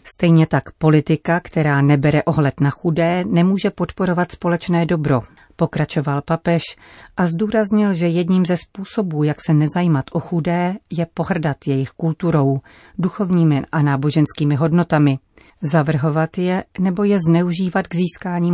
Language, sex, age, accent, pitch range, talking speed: Czech, female, 40-59, native, 145-175 Hz, 130 wpm